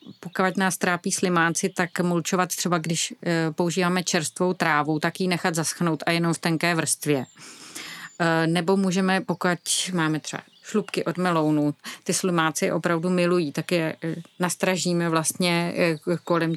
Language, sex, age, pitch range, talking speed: Czech, female, 30-49, 160-180 Hz, 135 wpm